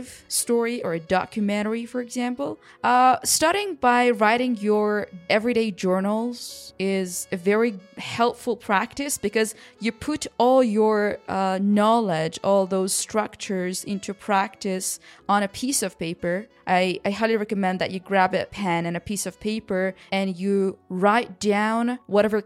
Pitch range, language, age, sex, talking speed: 190-225 Hz, English, 20-39, female, 145 wpm